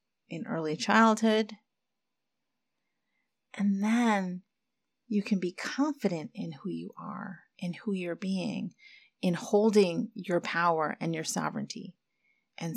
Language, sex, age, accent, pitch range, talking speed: English, female, 40-59, American, 165-220 Hz, 115 wpm